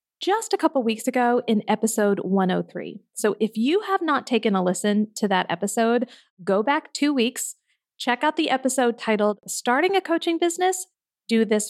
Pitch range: 195-255 Hz